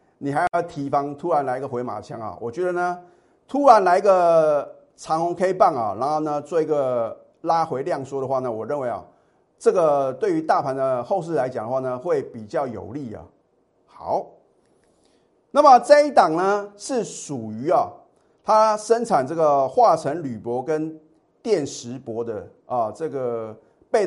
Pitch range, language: 135-210 Hz, Chinese